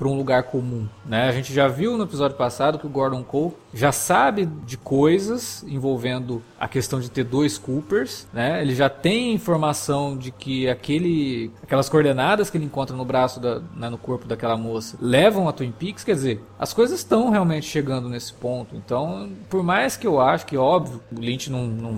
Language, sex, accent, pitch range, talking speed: Portuguese, male, Brazilian, 130-195 Hz, 200 wpm